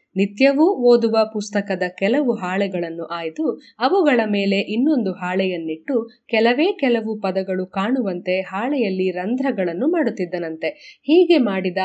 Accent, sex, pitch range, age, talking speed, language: native, female, 190-265 Hz, 20-39, 95 wpm, Kannada